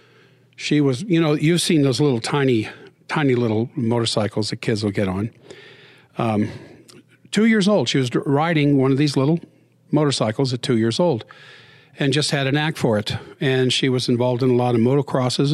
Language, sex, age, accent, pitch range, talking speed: English, male, 50-69, American, 125-150 Hz, 190 wpm